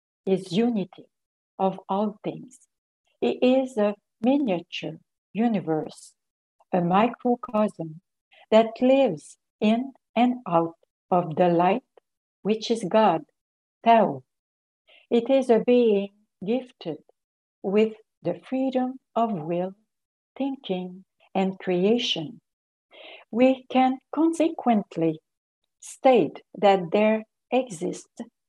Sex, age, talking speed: female, 60-79, 95 wpm